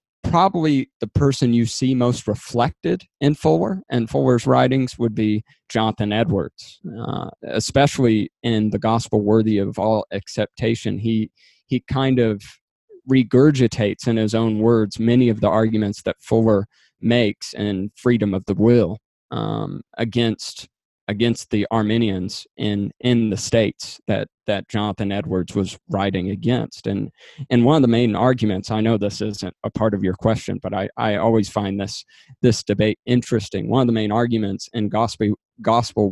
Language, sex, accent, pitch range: English, male, American, 105-120 Hz